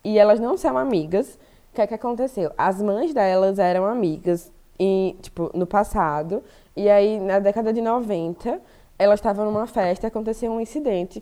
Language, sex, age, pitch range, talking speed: Portuguese, female, 20-39, 185-230 Hz, 155 wpm